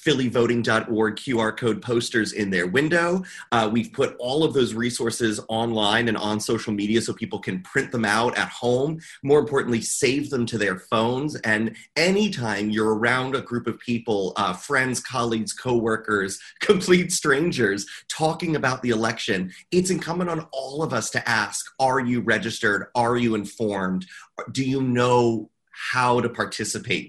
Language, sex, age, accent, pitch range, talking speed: English, male, 30-49, American, 110-140 Hz, 160 wpm